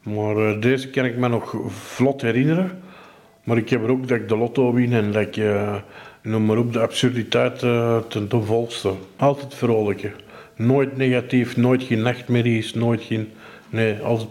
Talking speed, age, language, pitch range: 175 wpm, 50-69, Dutch, 115-135 Hz